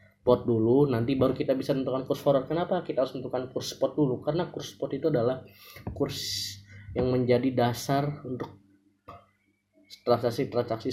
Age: 20-39